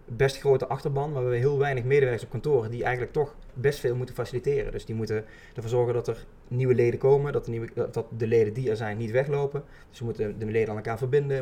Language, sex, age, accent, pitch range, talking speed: Dutch, male, 20-39, Dutch, 115-130 Hz, 250 wpm